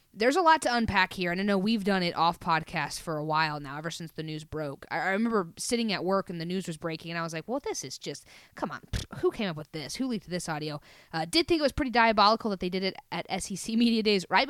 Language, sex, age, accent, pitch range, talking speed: English, female, 20-39, American, 165-230 Hz, 280 wpm